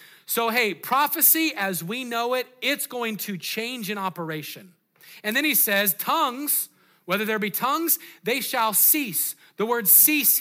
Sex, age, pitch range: male, 40-59, 190-230 Hz